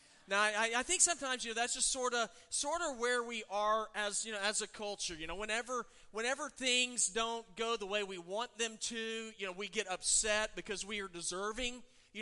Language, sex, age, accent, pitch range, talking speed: English, male, 30-49, American, 195-235 Hz, 220 wpm